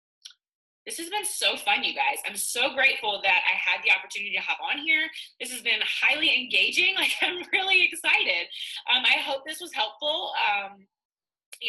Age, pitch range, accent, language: 20-39, 210-305 Hz, American, English